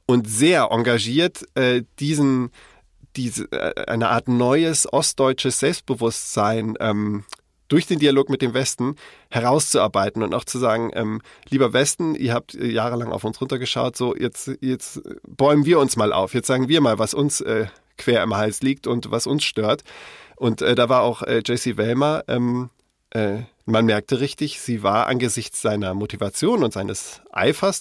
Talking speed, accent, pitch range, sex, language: 160 wpm, German, 110-135 Hz, male, German